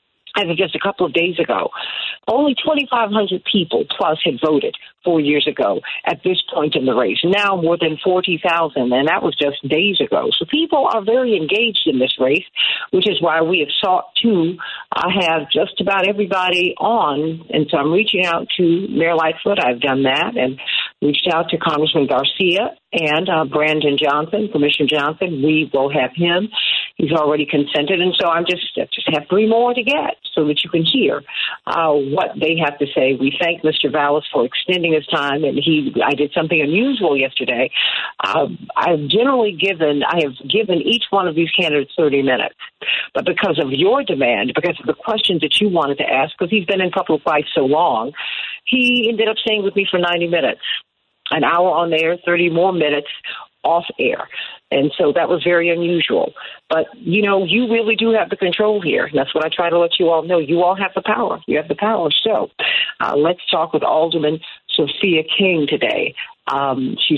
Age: 50-69